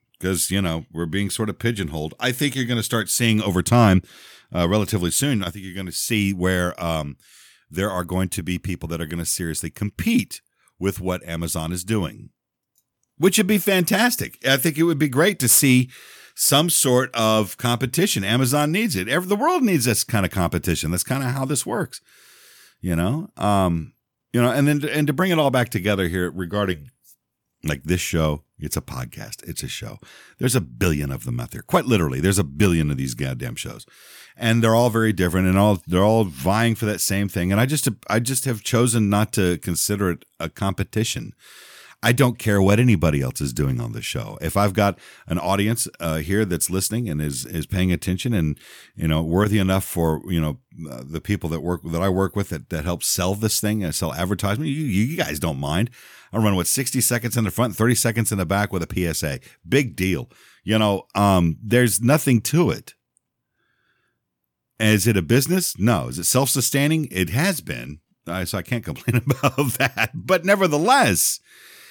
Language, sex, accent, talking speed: English, male, American, 205 wpm